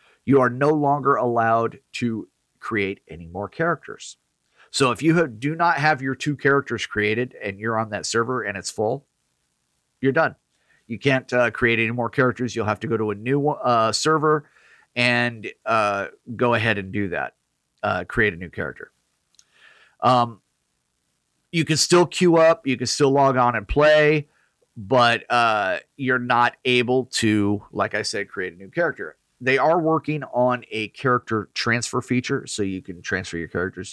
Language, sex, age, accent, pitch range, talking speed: English, male, 40-59, American, 110-140 Hz, 175 wpm